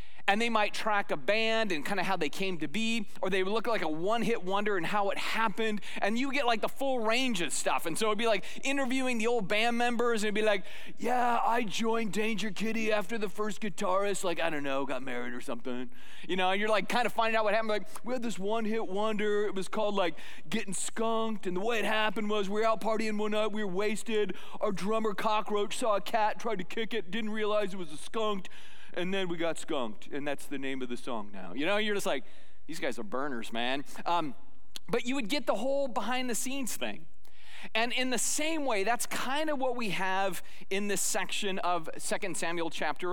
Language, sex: English, male